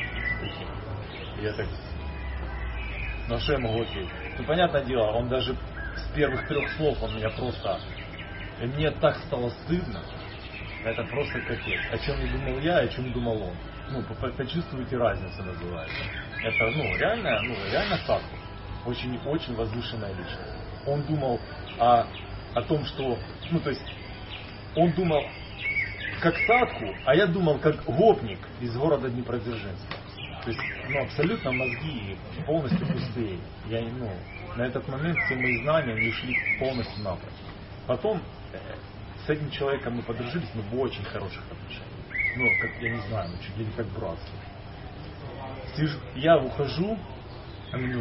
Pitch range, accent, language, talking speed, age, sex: 100-140 Hz, native, Russian, 135 wpm, 30-49, male